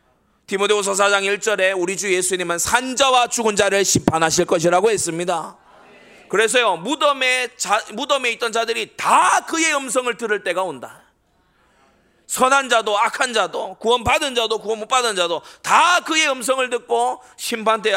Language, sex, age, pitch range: Korean, male, 30-49, 165-250 Hz